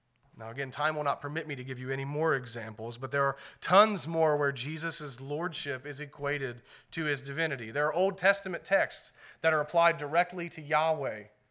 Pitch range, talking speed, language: 135-190 Hz, 195 wpm, English